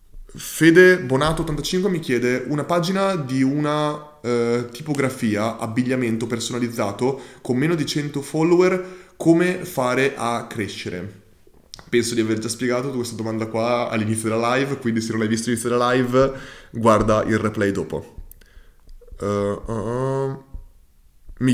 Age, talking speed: 20-39, 125 wpm